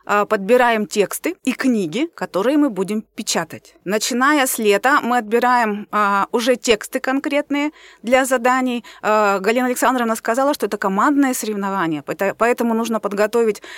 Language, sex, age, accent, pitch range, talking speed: Russian, female, 30-49, native, 205-260 Hz, 120 wpm